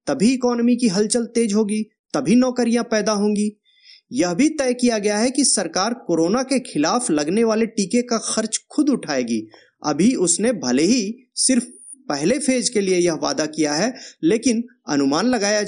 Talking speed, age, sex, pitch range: 165 wpm, 30-49, male, 190-260 Hz